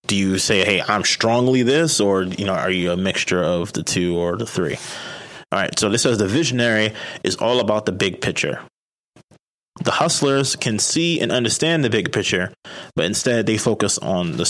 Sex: male